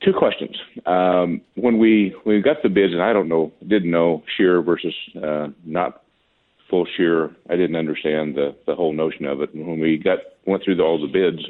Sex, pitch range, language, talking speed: male, 75-90 Hz, English, 215 wpm